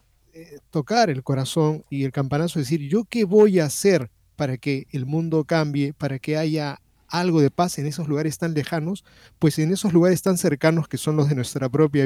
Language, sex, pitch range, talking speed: Spanish, male, 140-165 Hz, 200 wpm